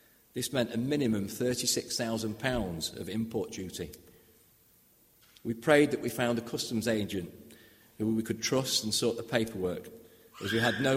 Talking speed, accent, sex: 155 wpm, British, male